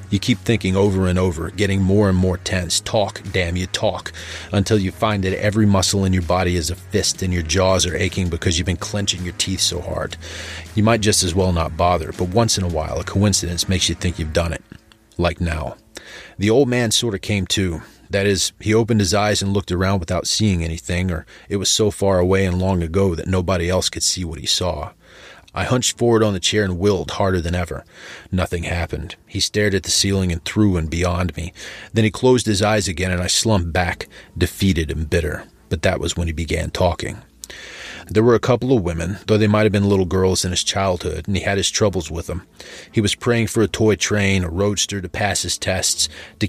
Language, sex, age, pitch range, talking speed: English, male, 30-49, 90-105 Hz, 230 wpm